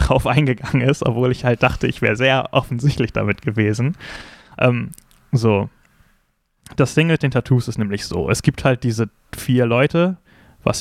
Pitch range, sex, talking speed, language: 110-130 Hz, male, 165 wpm, German